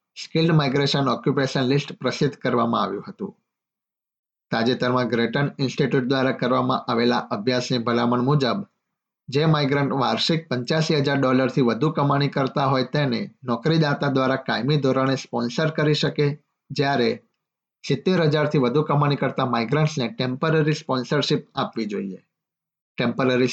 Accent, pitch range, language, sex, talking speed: native, 125-150 Hz, Gujarati, male, 80 wpm